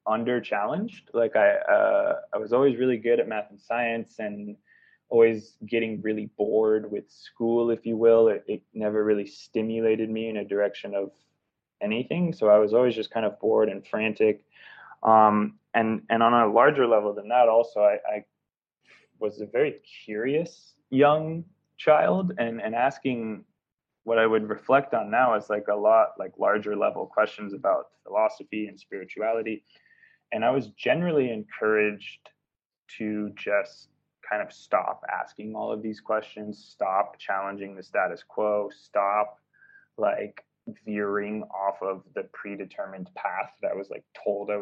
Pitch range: 105-130 Hz